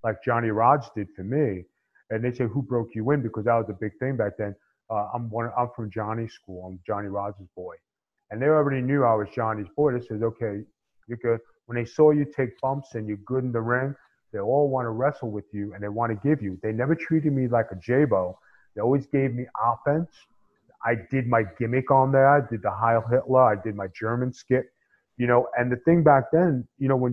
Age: 30-49